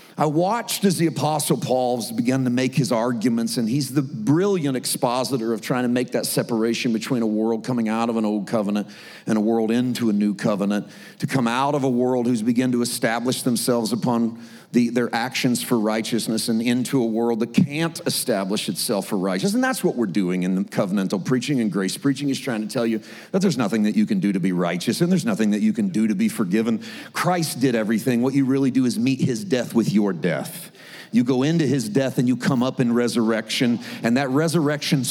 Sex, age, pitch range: male, 40-59, 115-165 Hz